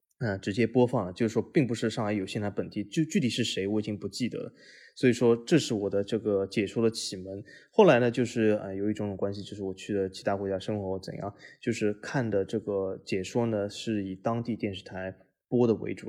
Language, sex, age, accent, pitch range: Chinese, male, 20-39, native, 100-120 Hz